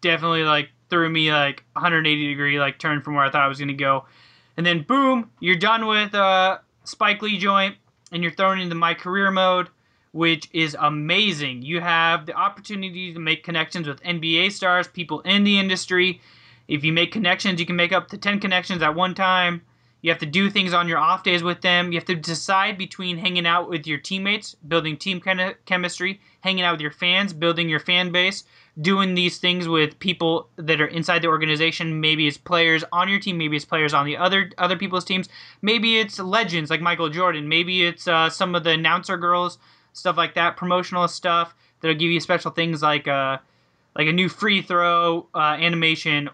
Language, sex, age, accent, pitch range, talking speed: English, male, 20-39, American, 155-185 Hz, 205 wpm